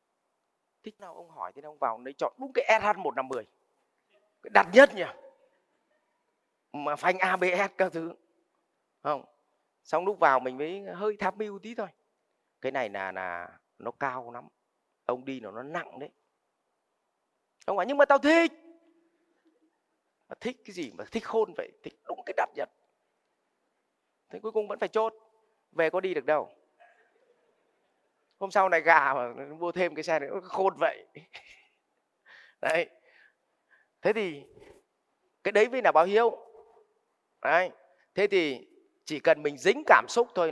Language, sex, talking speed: Vietnamese, male, 165 wpm